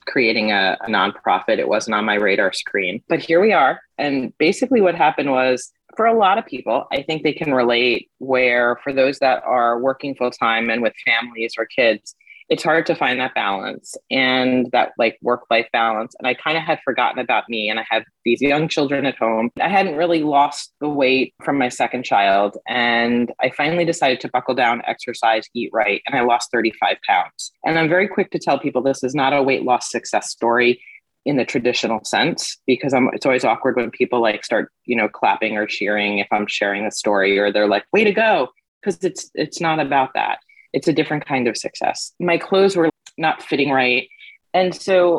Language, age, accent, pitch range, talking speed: English, 30-49, American, 120-155 Hz, 210 wpm